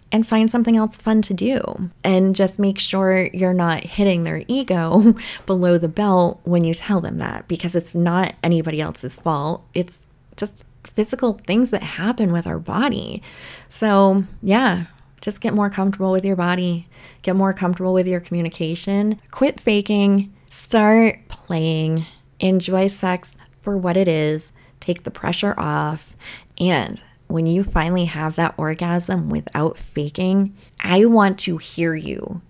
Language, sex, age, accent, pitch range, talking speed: English, female, 20-39, American, 165-210 Hz, 150 wpm